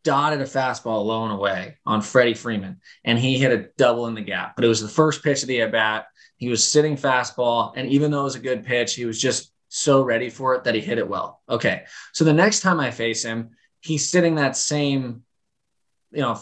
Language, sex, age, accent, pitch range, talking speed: English, male, 20-39, American, 115-145 Hz, 240 wpm